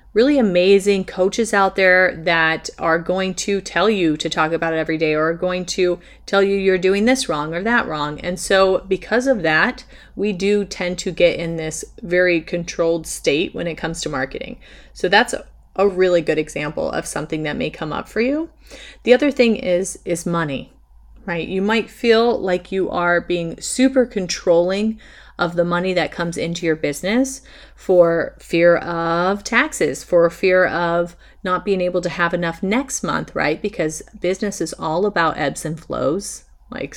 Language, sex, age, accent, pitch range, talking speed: English, female, 30-49, American, 170-205 Hz, 185 wpm